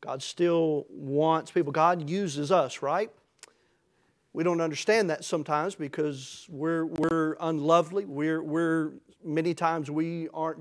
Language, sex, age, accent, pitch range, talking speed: English, male, 40-59, American, 150-175 Hz, 130 wpm